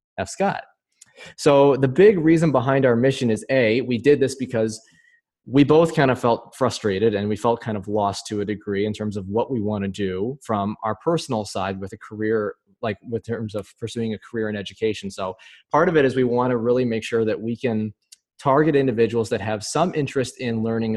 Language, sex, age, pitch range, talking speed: English, male, 20-39, 105-140 Hz, 220 wpm